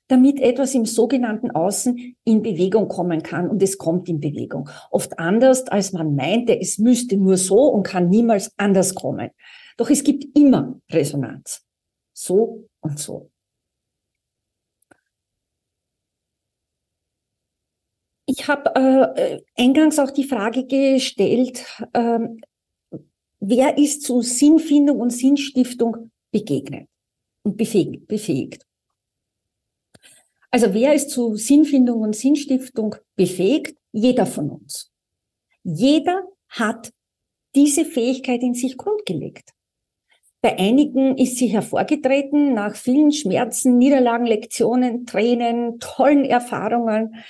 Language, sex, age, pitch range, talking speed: German, female, 50-69, 210-265 Hz, 105 wpm